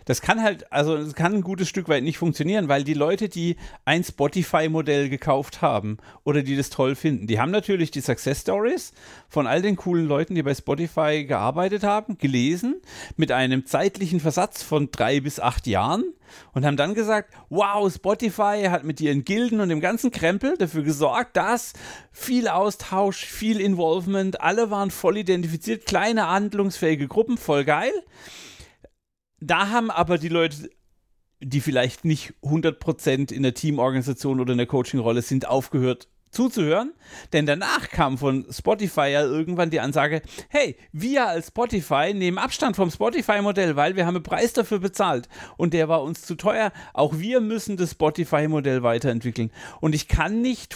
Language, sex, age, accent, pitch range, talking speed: German, male, 40-59, German, 145-200 Hz, 165 wpm